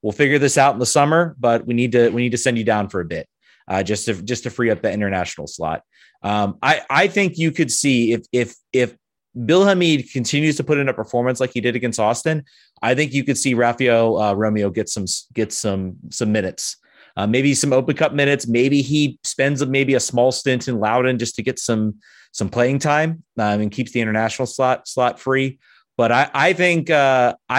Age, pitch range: 30-49, 105-135 Hz